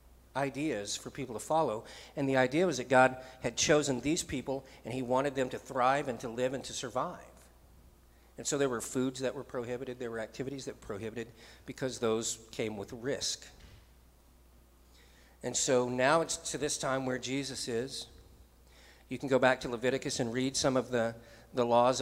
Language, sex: English, male